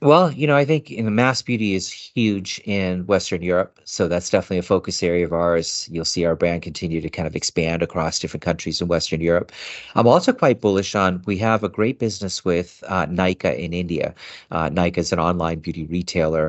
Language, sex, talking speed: English, male, 220 wpm